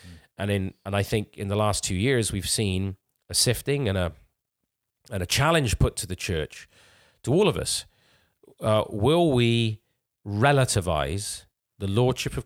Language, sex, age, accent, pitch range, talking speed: English, male, 30-49, British, 90-115 Hz, 165 wpm